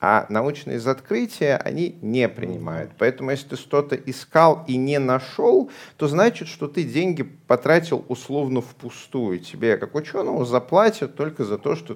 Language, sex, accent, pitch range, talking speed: Russian, male, native, 110-145 Hz, 150 wpm